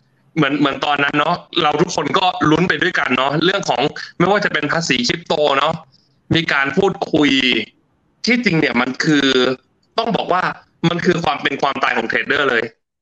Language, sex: Thai, male